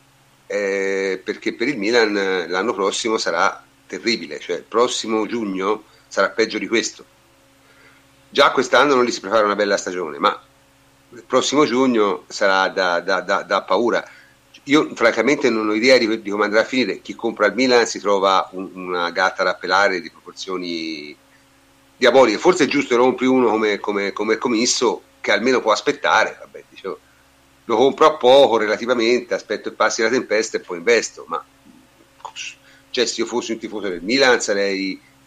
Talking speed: 165 wpm